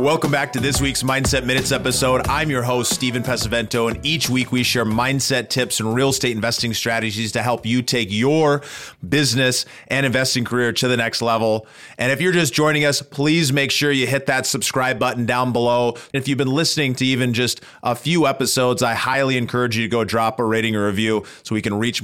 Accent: American